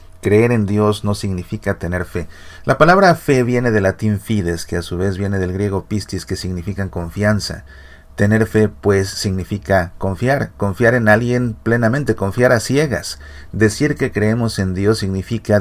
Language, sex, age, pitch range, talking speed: Spanish, male, 40-59, 95-120 Hz, 165 wpm